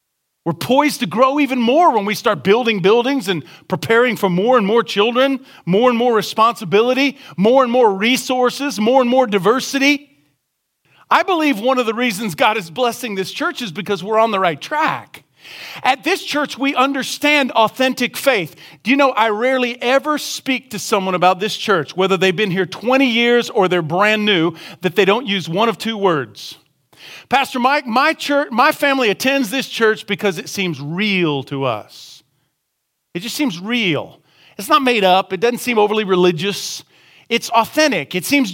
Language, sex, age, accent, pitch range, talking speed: English, male, 40-59, American, 190-265 Hz, 180 wpm